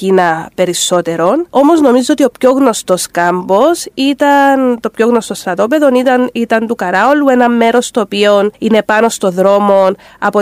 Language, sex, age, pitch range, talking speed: Greek, female, 30-49, 195-250 Hz, 145 wpm